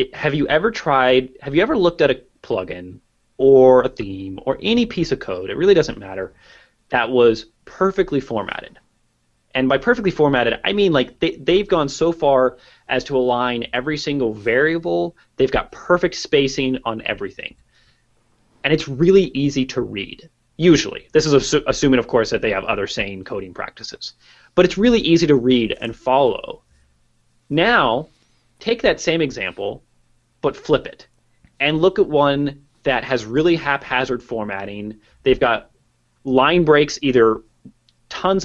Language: English